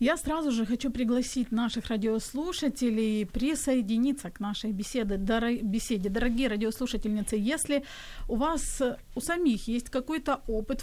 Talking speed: 120 wpm